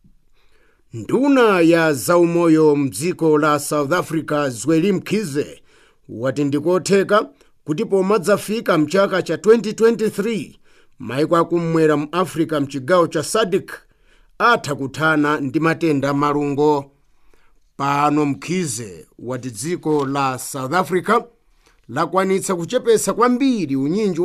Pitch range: 150-200 Hz